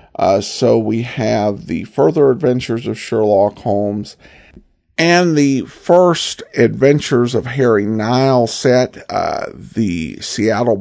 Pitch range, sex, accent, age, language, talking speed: 110-165 Hz, male, American, 50-69, English, 115 wpm